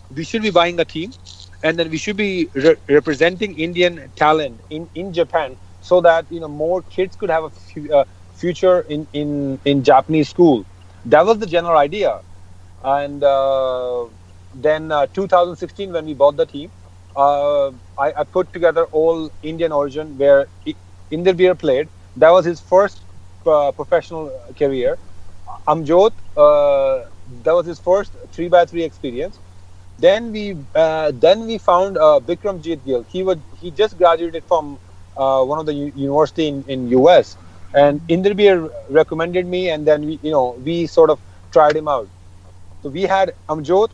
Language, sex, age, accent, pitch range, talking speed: English, male, 30-49, Indian, 135-180 Hz, 160 wpm